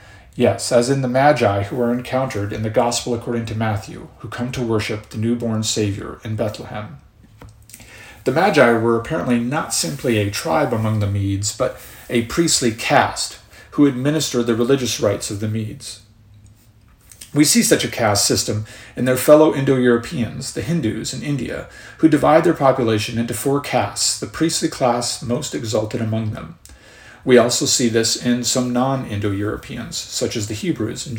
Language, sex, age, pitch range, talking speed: English, male, 40-59, 105-130 Hz, 165 wpm